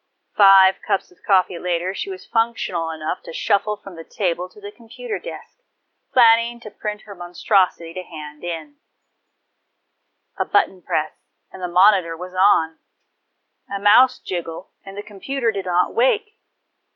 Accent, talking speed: American, 150 wpm